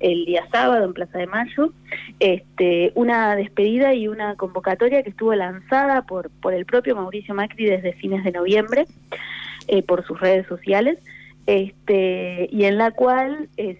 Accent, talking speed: Argentinian, 160 wpm